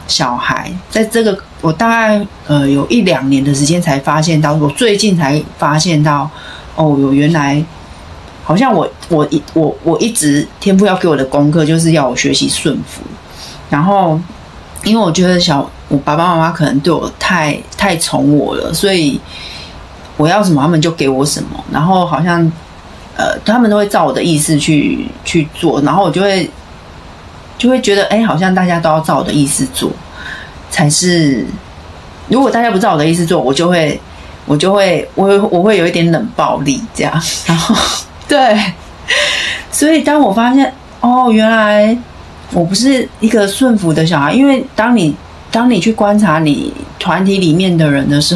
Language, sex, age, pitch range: Chinese, female, 30-49, 150-205 Hz